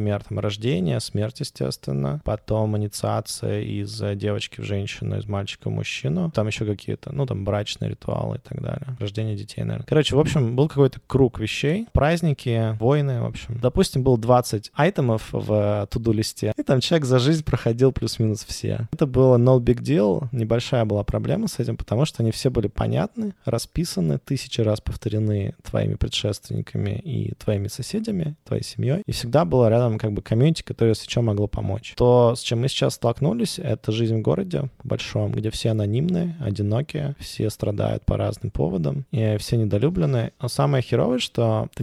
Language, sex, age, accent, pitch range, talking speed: Russian, male, 20-39, native, 105-135 Hz, 170 wpm